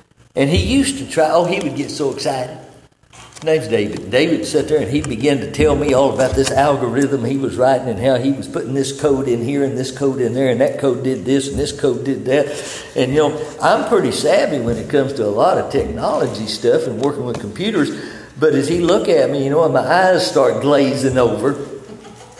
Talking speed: 235 wpm